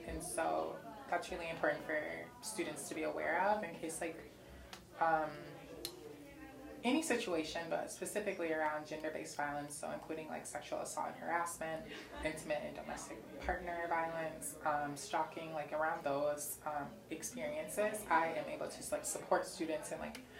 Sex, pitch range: female, 150-165 Hz